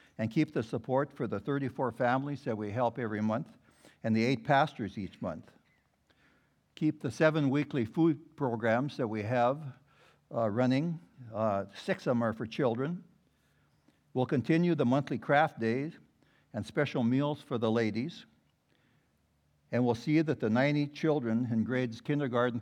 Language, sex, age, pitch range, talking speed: English, male, 60-79, 110-140 Hz, 155 wpm